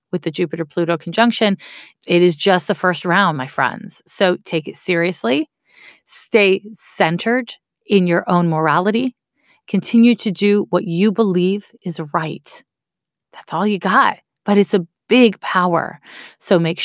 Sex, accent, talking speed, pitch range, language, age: female, American, 145 wpm, 185-260 Hz, English, 30-49